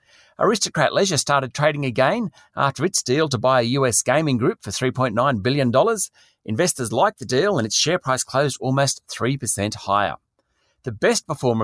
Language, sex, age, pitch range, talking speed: English, male, 40-59, 125-160 Hz, 165 wpm